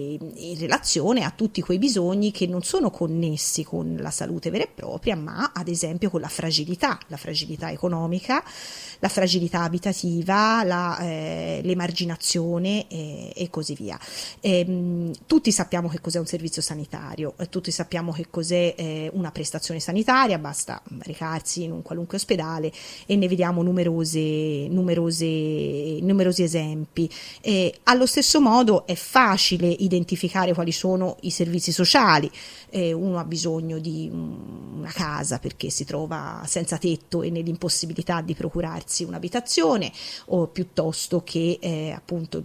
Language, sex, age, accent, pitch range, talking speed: Italian, female, 30-49, native, 160-185 Hz, 135 wpm